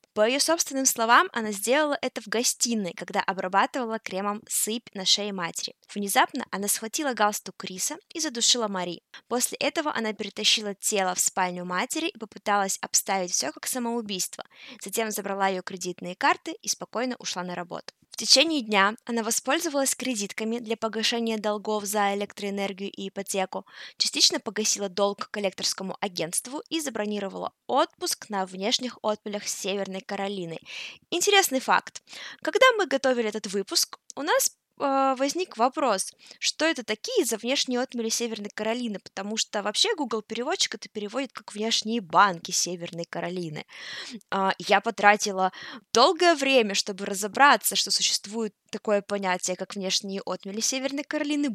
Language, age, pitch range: Russian, 20-39, 195-250 Hz